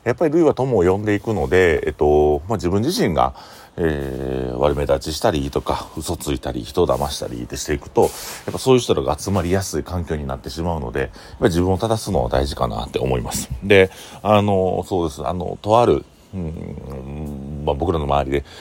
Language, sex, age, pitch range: Japanese, male, 40-59, 70-100 Hz